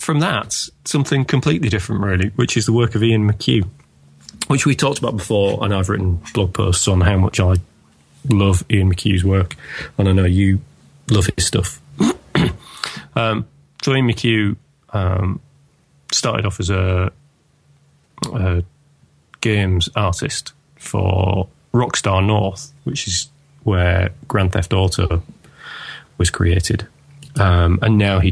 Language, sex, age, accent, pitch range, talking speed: English, male, 30-49, British, 90-120 Hz, 140 wpm